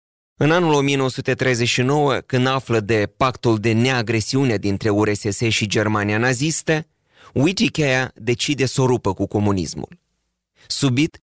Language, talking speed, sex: Romanian, 115 wpm, male